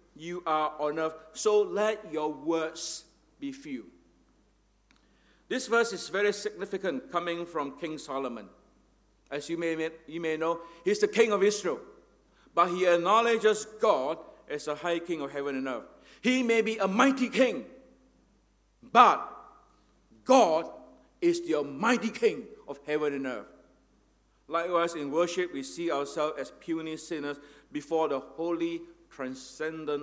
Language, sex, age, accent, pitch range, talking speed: English, male, 50-69, Malaysian, 150-205 Hz, 140 wpm